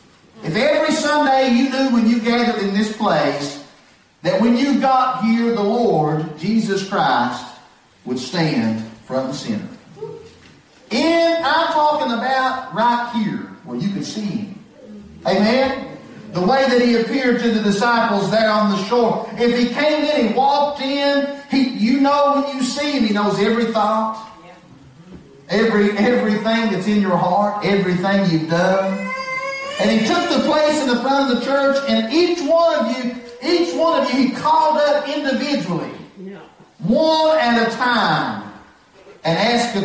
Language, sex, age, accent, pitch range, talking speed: English, male, 40-59, American, 205-280 Hz, 160 wpm